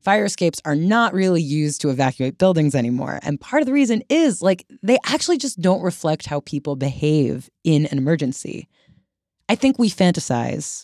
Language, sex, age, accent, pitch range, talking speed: English, female, 20-39, American, 130-190 Hz, 175 wpm